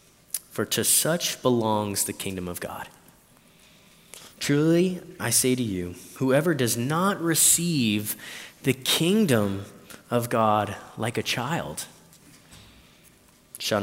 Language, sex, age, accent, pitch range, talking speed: English, male, 20-39, American, 105-130 Hz, 110 wpm